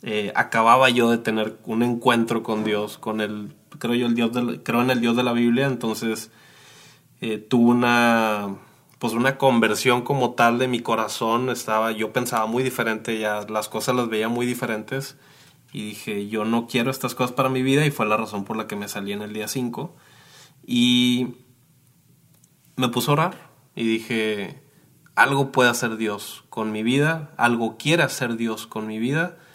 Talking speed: 185 wpm